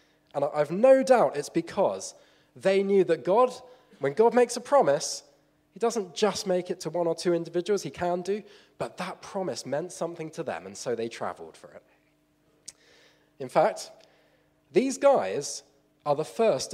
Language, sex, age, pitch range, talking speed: English, male, 20-39, 155-220 Hz, 170 wpm